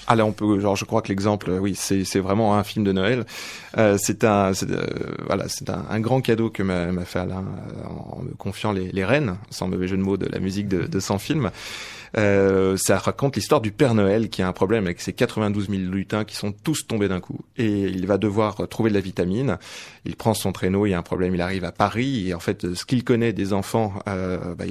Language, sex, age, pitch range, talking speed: French, male, 30-49, 95-110 Hz, 255 wpm